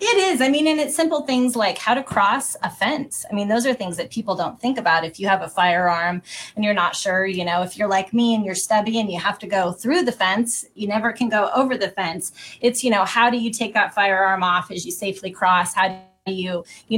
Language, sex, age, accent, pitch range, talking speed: English, female, 20-39, American, 190-240 Hz, 265 wpm